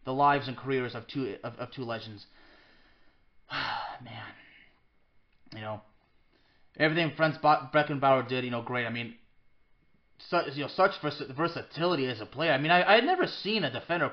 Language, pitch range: English, 130-185 Hz